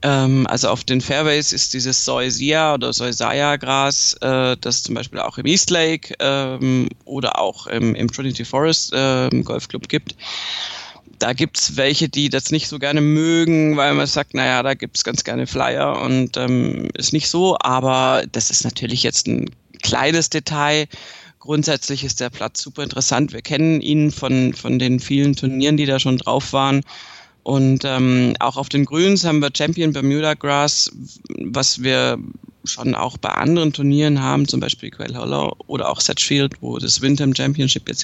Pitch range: 130-155 Hz